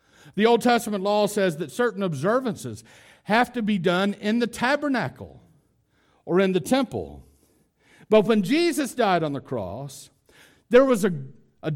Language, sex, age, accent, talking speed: English, male, 60-79, American, 155 wpm